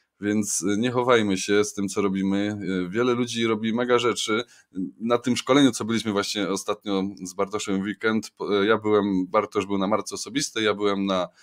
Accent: native